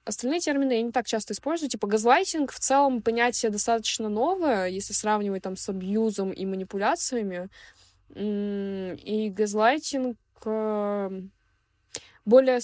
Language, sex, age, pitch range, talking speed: Russian, female, 20-39, 195-230 Hz, 115 wpm